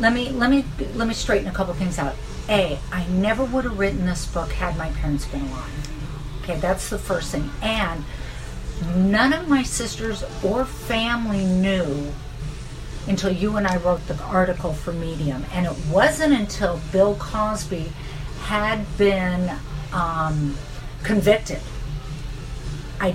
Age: 50-69